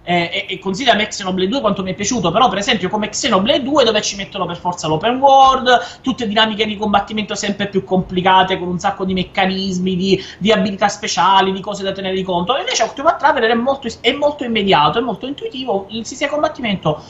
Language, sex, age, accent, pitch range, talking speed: Italian, male, 30-49, native, 185-240 Hz, 205 wpm